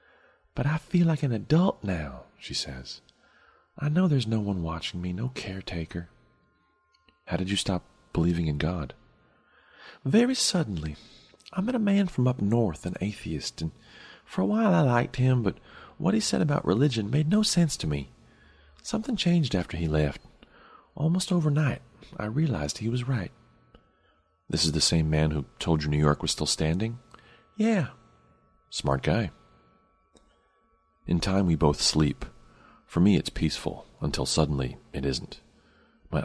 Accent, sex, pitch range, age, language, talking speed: American, male, 75-115 Hz, 40-59, English, 160 wpm